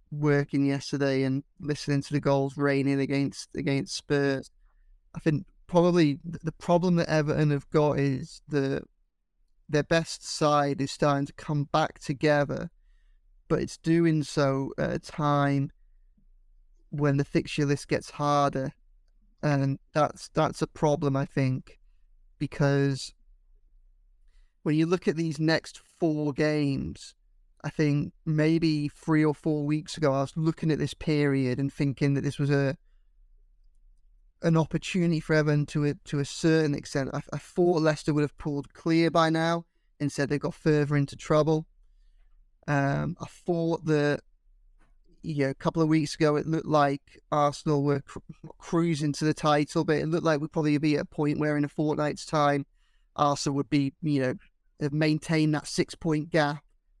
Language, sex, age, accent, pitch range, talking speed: English, male, 20-39, British, 140-155 Hz, 165 wpm